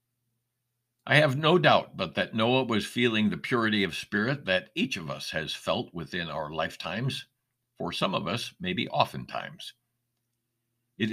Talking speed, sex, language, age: 155 wpm, male, English, 60-79